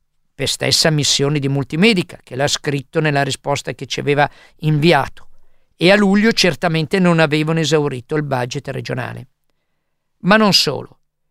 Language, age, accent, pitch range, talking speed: Italian, 50-69, native, 140-180 Hz, 140 wpm